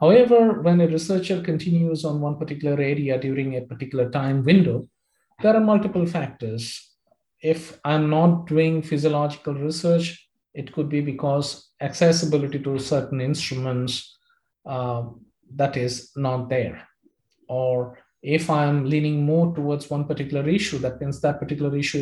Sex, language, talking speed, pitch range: male, English, 140 wpm, 135-165 Hz